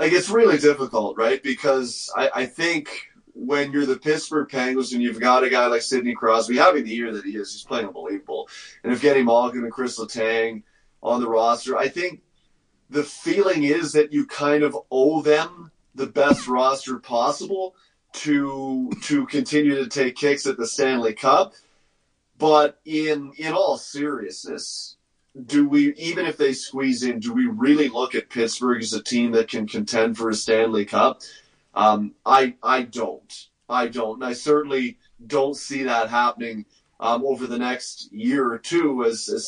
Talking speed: 175 wpm